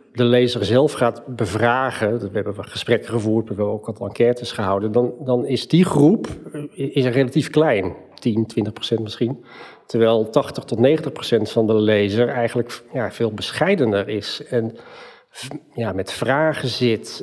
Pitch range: 115-145 Hz